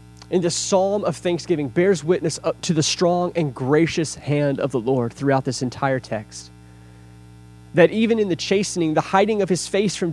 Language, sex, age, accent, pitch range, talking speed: English, male, 20-39, American, 145-205 Hz, 190 wpm